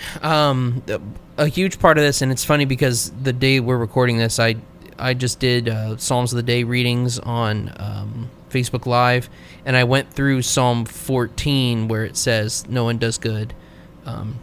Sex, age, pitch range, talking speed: male, 20-39, 115-130 Hz, 180 wpm